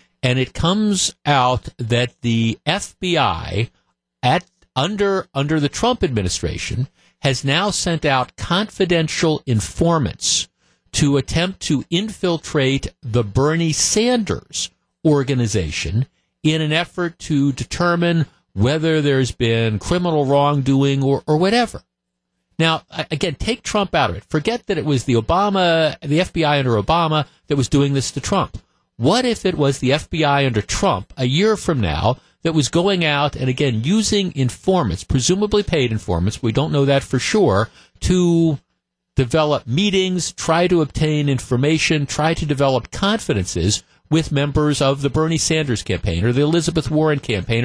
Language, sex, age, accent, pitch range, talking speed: English, male, 50-69, American, 125-175 Hz, 145 wpm